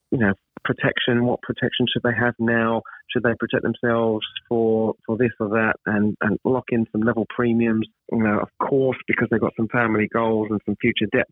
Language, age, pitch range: English, 30-49, 105-120 Hz